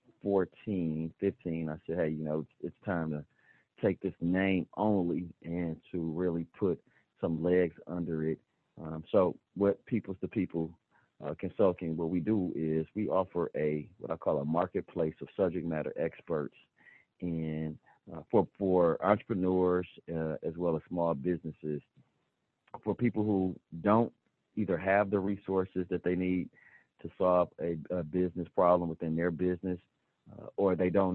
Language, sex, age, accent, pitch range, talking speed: English, male, 40-59, American, 80-95 Hz, 160 wpm